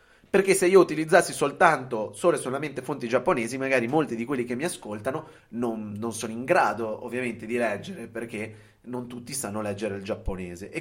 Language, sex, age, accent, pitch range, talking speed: Italian, male, 30-49, native, 110-135 Hz, 185 wpm